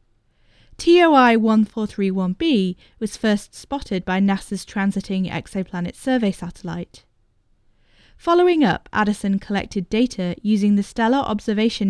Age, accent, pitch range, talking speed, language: 10-29, British, 185-245 Hz, 95 wpm, English